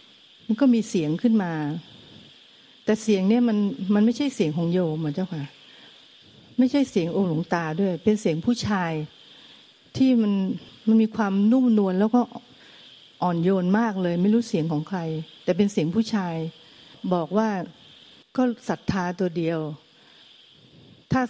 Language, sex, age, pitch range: Thai, female, 60-79, 170-220 Hz